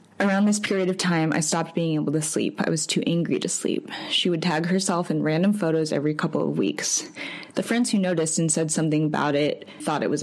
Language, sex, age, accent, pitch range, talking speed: English, female, 10-29, American, 155-195 Hz, 235 wpm